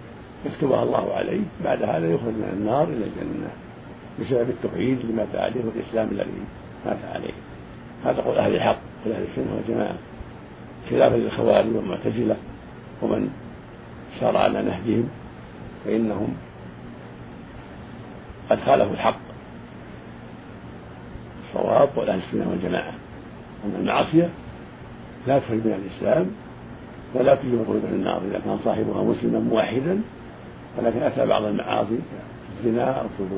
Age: 50-69